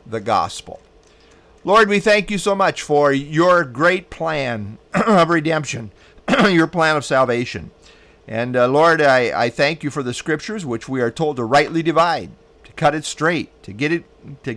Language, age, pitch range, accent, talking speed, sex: English, 50-69, 120-165 Hz, American, 170 wpm, male